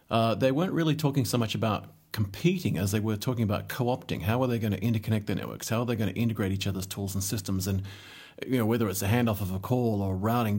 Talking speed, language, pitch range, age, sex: 260 wpm, English, 100-115 Hz, 30-49, male